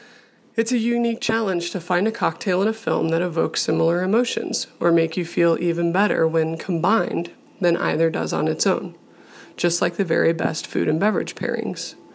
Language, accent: English, American